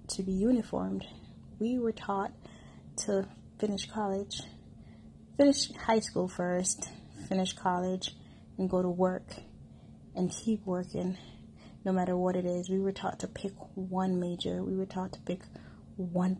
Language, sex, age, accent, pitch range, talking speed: English, female, 20-39, American, 180-210 Hz, 145 wpm